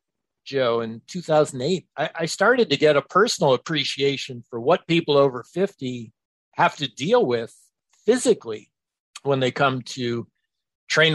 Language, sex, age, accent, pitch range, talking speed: English, male, 50-69, American, 125-155 Hz, 140 wpm